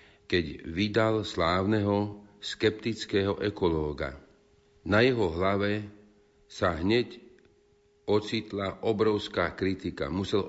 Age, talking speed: 50-69, 80 wpm